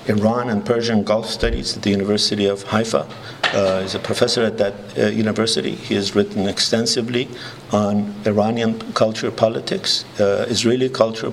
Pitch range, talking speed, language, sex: 105-115 Hz, 155 wpm, English, male